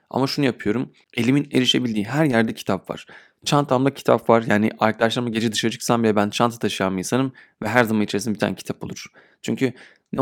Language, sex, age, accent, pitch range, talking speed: Turkish, male, 30-49, native, 105-125 Hz, 195 wpm